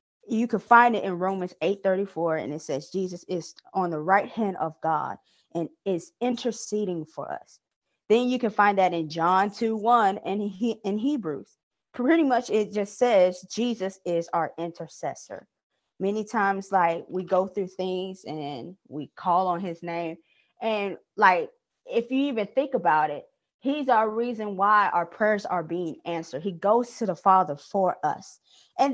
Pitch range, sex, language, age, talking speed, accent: 185-245 Hz, female, English, 20-39, 175 wpm, American